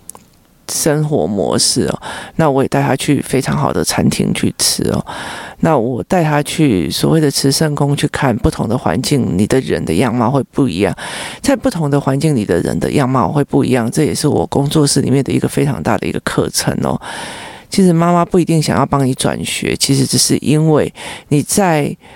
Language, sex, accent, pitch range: Chinese, male, native, 140-165 Hz